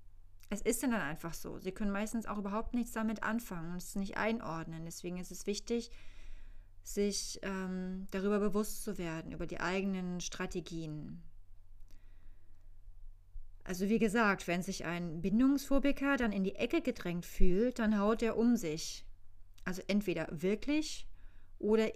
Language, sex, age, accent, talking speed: German, female, 30-49, German, 145 wpm